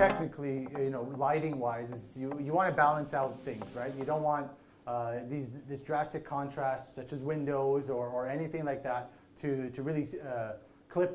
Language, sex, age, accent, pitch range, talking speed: English, male, 30-49, American, 130-160 Hz, 190 wpm